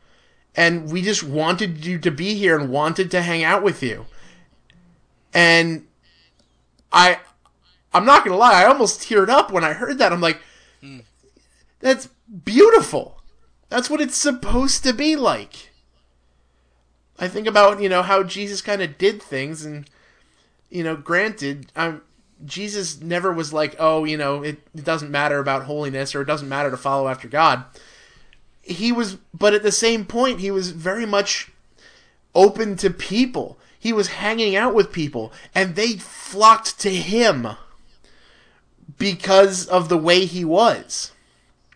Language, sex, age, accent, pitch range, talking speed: English, male, 30-49, American, 155-205 Hz, 160 wpm